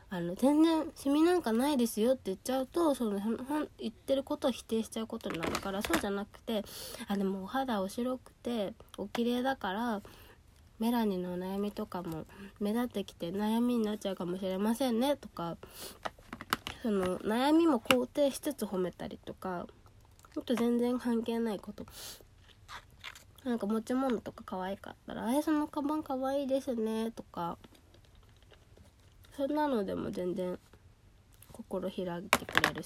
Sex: female